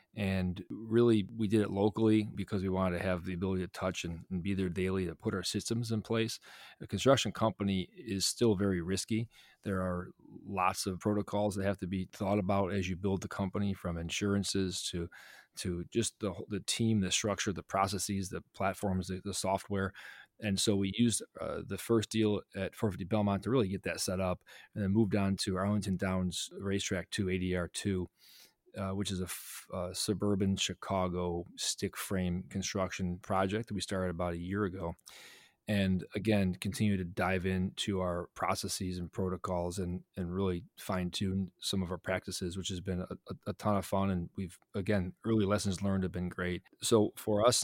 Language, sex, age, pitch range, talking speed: English, male, 30-49, 95-105 Hz, 190 wpm